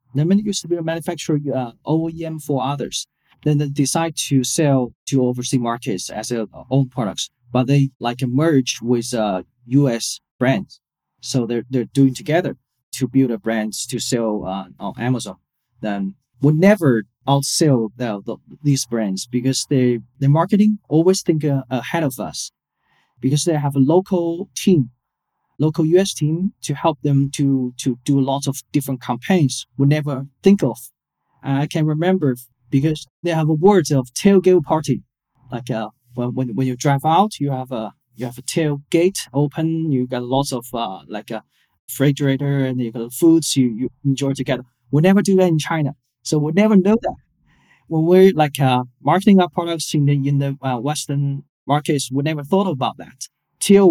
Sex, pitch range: male, 125-160 Hz